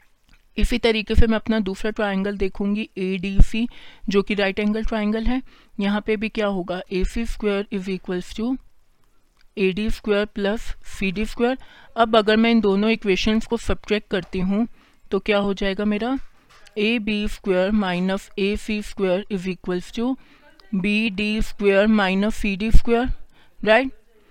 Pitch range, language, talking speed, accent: 195-225 Hz, Hindi, 150 wpm, native